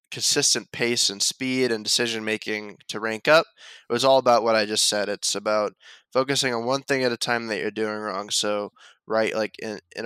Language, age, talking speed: English, 10-29, 215 wpm